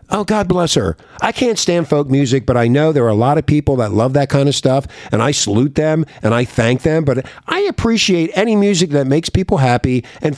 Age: 50-69